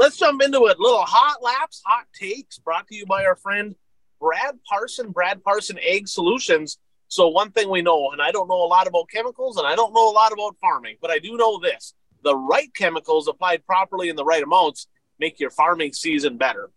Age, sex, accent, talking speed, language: 30-49, male, American, 220 wpm, English